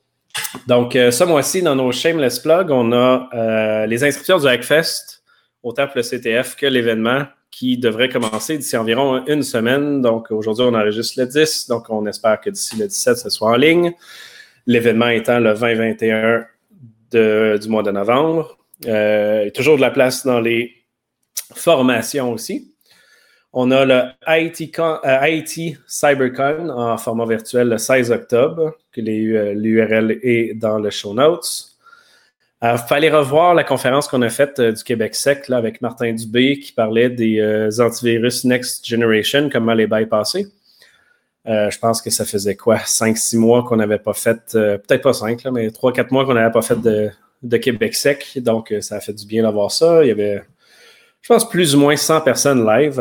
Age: 30-49